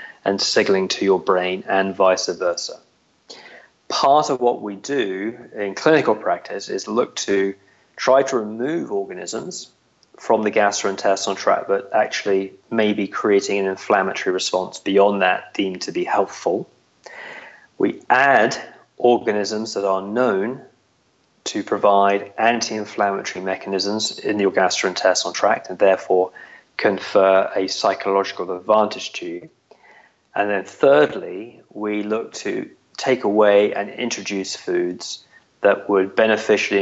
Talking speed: 125 wpm